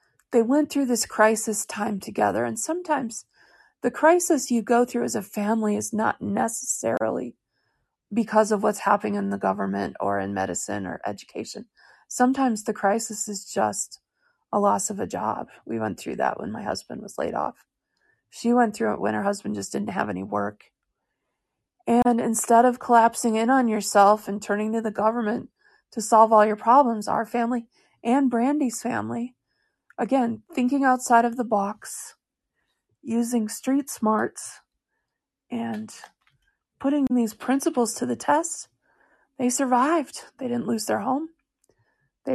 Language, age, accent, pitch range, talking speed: English, 30-49, American, 215-255 Hz, 155 wpm